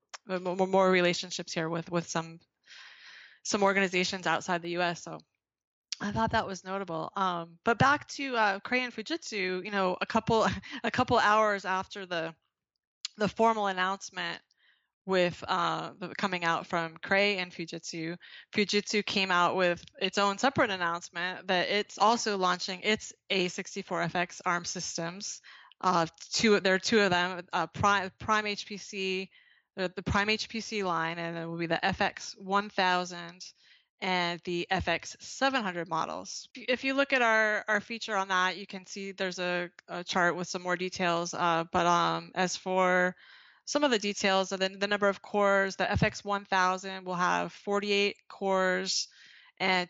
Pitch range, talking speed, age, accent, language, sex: 175-205 Hz, 180 wpm, 20-39, American, English, female